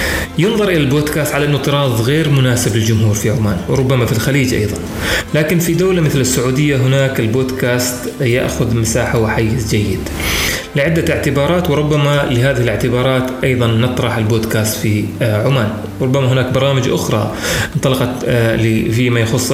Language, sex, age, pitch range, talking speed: Arabic, male, 30-49, 115-140 Hz, 130 wpm